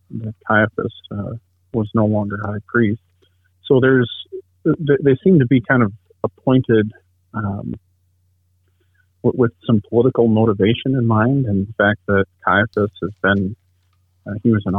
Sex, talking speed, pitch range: male, 140 wpm, 90-110 Hz